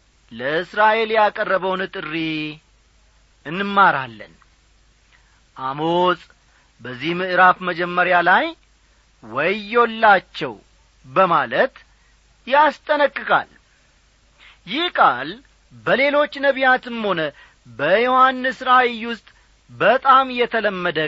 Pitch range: 155-220 Hz